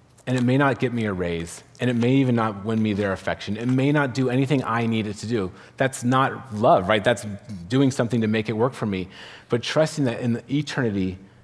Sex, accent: male, American